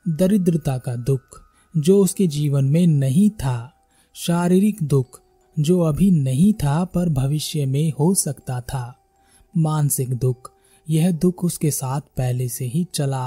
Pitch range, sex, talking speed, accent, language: 135-175 Hz, male, 140 wpm, native, Hindi